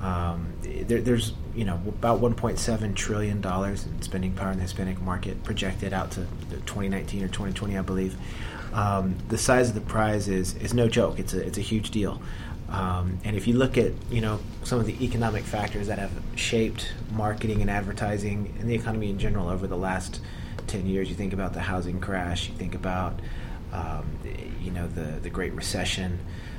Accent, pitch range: American, 90-110 Hz